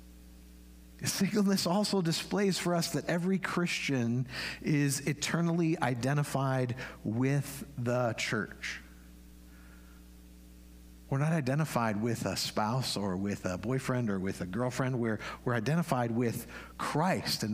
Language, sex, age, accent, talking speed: English, male, 50-69, American, 115 wpm